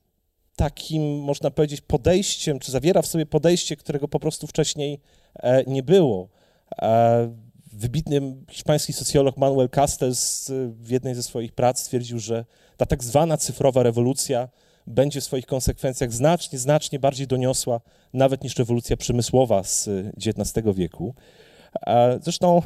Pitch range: 115-150 Hz